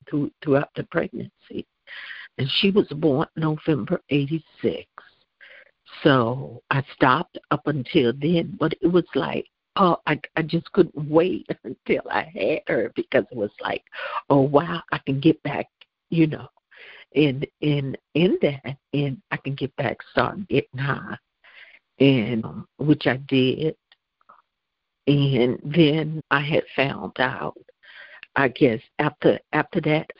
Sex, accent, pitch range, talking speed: female, American, 140-170 Hz, 135 wpm